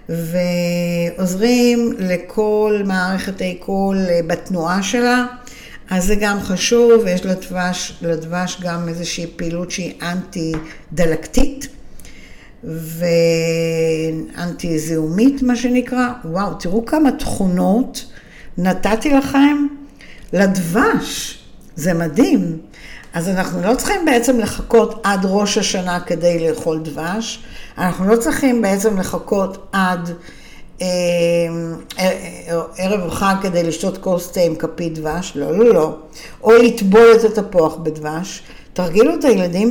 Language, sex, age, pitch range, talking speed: Hebrew, female, 60-79, 175-230 Hz, 110 wpm